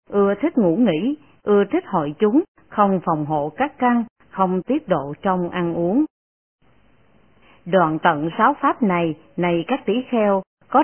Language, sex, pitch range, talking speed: Vietnamese, female, 175-255 Hz, 155 wpm